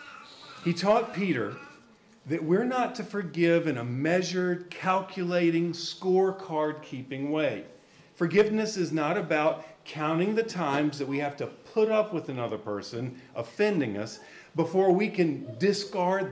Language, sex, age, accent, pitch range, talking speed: English, male, 40-59, American, 145-200 Hz, 130 wpm